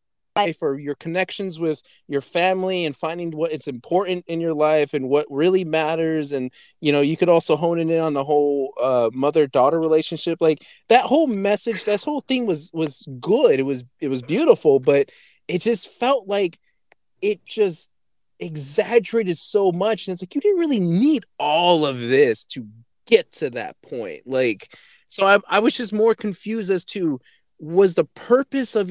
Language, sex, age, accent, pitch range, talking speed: English, male, 30-49, American, 145-205 Hz, 180 wpm